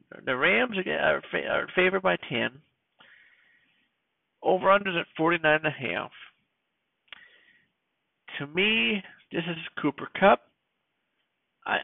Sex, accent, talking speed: male, American, 85 wpm